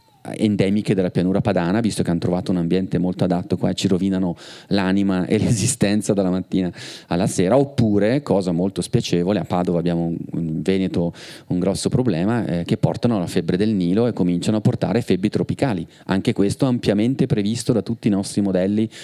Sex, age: male, 30-49